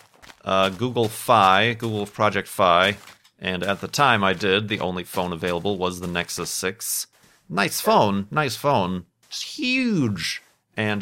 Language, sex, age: English, male, 40-59